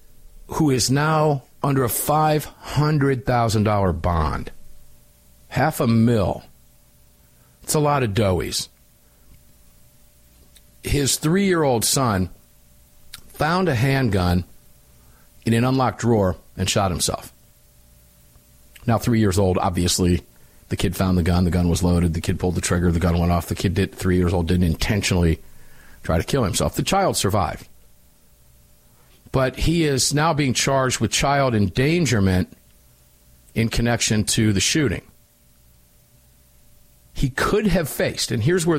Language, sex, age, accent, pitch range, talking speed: English, male, 50-69, American, 80-120 Hz, 135 wpm